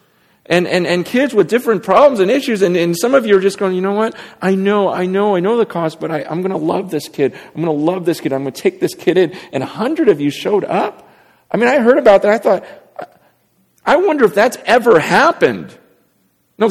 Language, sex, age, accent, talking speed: English, male, 40-59, American, 255 wpm